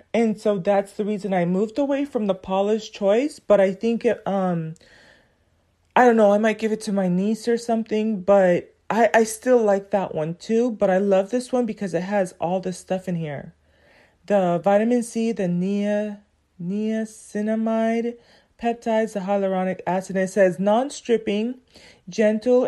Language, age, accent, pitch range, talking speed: English, 30-49, American, 190-230 Hz, 170 wpm